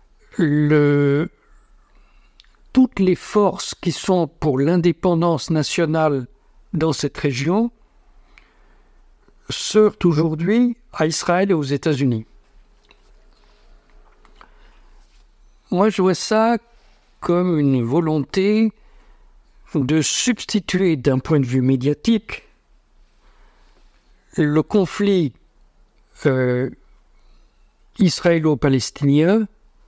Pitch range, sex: 145-200 Hz, male